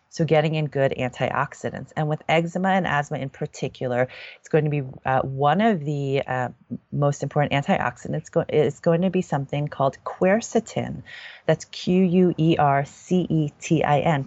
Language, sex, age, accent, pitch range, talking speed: English, female, 30-49, American, 130-170 Hz, 140 wpm